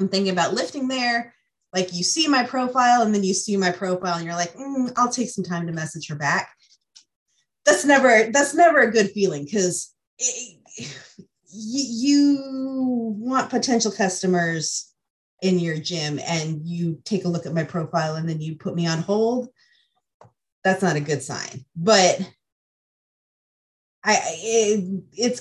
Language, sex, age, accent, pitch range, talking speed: English, female, 30-49, American, 165-220 Hz, 160 wpm